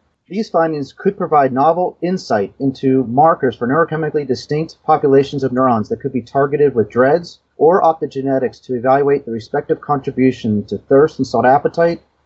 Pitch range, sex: 115-150 Hz, male